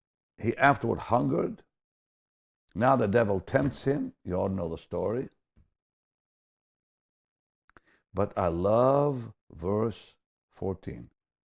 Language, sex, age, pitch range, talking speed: English, male, 60-79, 110-165 Hz, 95 wpm